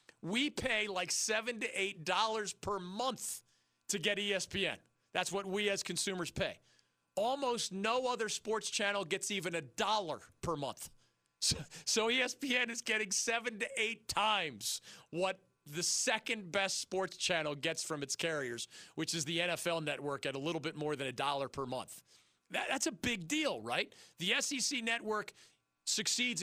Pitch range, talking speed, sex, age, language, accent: 165-220 Hz, 165 wpm, male, 40-59, English, American